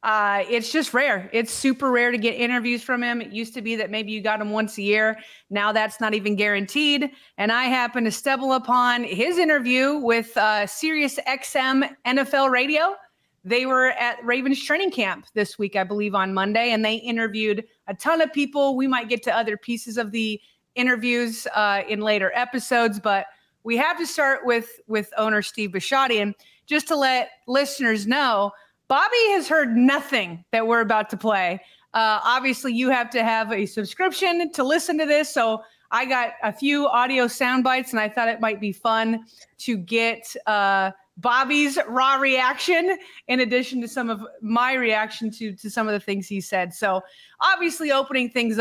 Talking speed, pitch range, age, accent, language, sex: 190 wpm, 210-265 Hz, 30-49, American, English, female